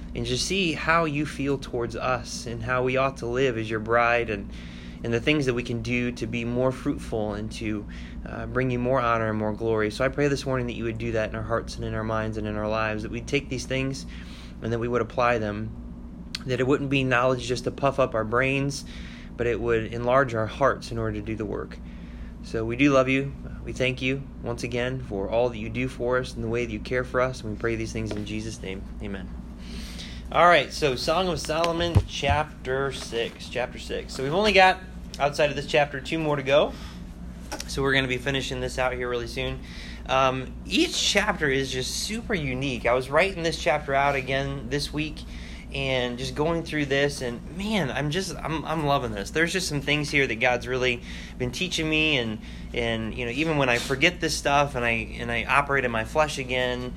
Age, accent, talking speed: 20-39, American, 230 wpm